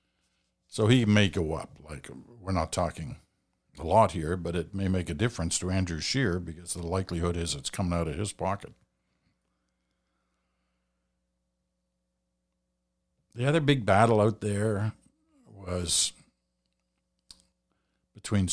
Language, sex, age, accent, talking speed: English, male, 50-69, American, 125 wpm